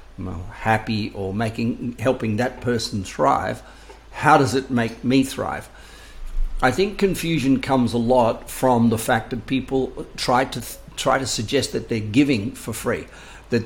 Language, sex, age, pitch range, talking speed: English, male, 50-69, 110-130 Hz, 155 wpm